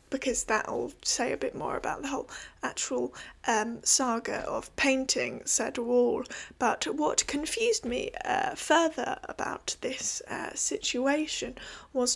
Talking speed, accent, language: 135 wpm, British, English